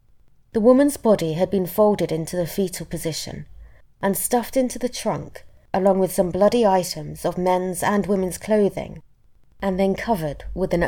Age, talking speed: 20-39, 165 wpm